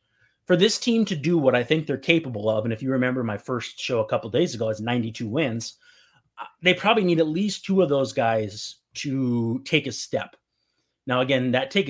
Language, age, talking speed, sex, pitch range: English, 30-49, 215 wpm, male, 115-150 Hz